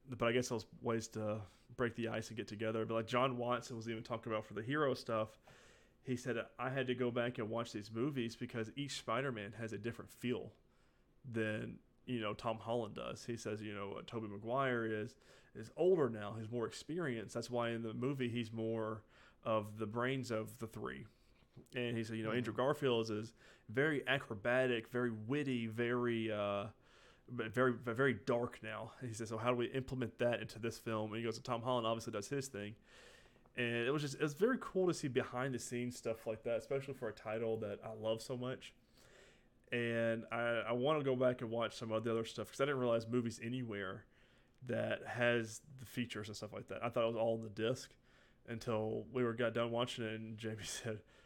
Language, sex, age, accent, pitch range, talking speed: English, male, 30-49, American, 110-125 Hz, 215 wpm